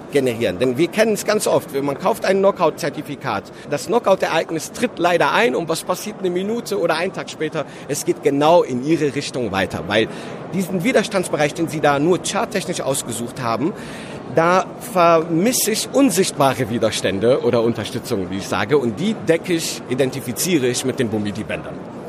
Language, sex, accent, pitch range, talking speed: German, male, German, 140-185 Hz, 170 wpm